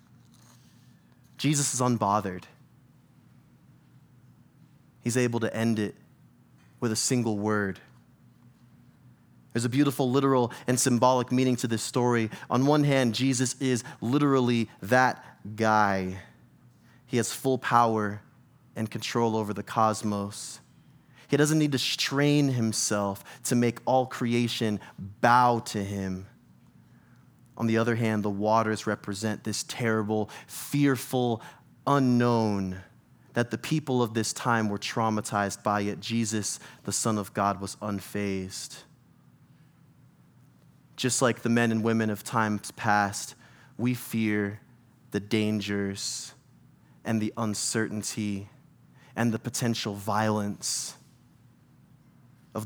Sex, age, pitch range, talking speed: male, 20-39, 105-125 Hz, 115 wpm